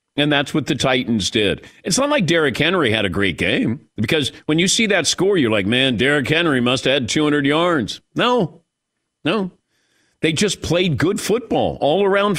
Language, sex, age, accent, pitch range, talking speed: English, male, 50-69, American, 125-175 Hz, 190 wpm